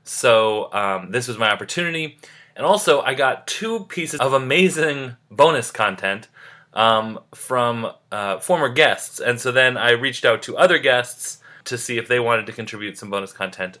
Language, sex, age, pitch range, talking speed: English, male, 20-39, 115-155 Hz, 175 wpm